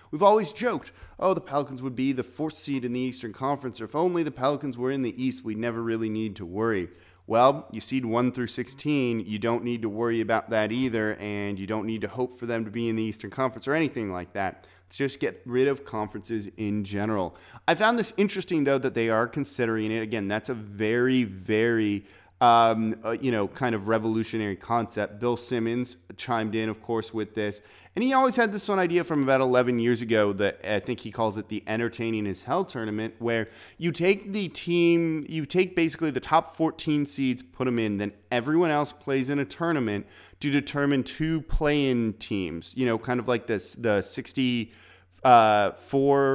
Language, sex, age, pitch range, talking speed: English, male, 30-49, 110-145 Hz, 205 wpm